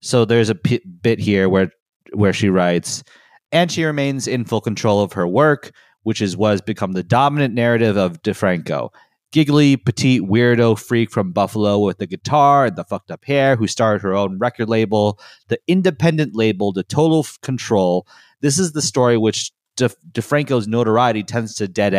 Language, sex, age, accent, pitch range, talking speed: English, male, 30-49, American, 100-130 Hz, 175 wpm